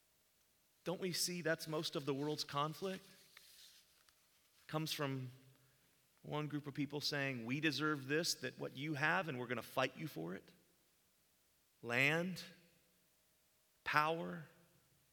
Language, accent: English, American